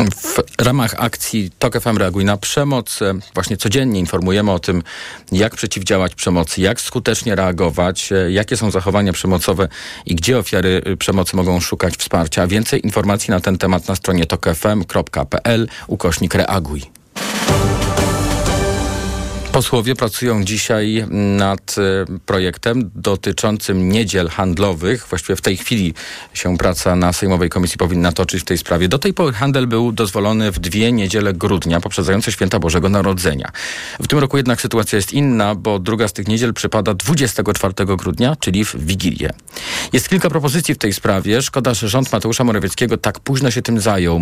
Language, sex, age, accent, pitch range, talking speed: Polish, male, 40-59, native, 95-115 Hz, 150 wpm